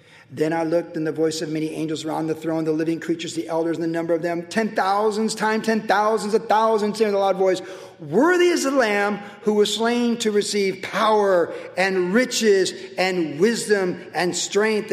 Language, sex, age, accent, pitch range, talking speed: English, male, 50-69, American, 160-205 Hz, 205 wpm